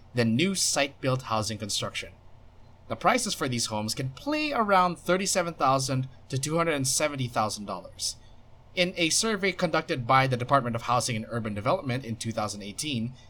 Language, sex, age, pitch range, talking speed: English, male, 20-39, 110-155 Hz, 135 wpm